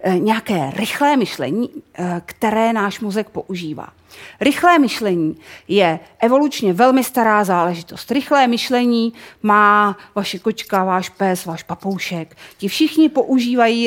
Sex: female